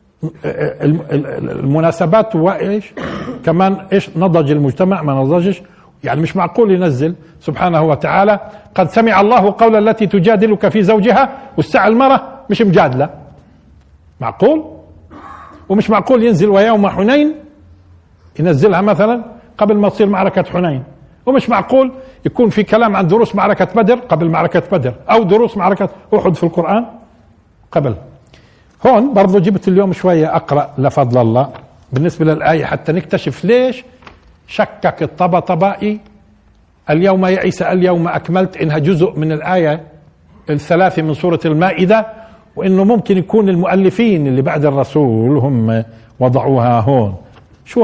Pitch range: 150-210 Hz